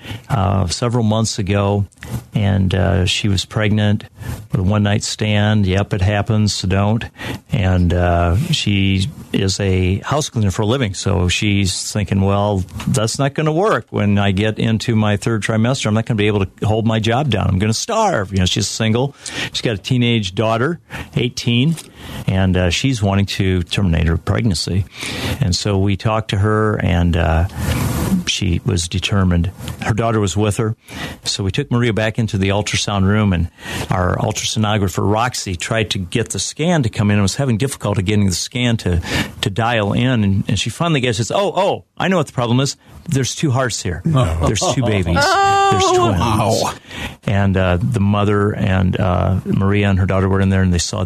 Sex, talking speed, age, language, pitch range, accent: male, 195 wpm, 50-69, English, 95-120 Hz, American